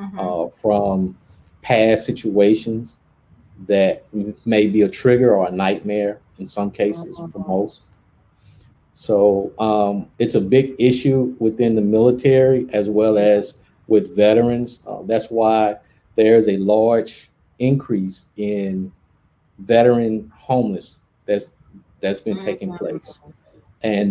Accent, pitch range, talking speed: American, 100-125 Hz, 115 wpm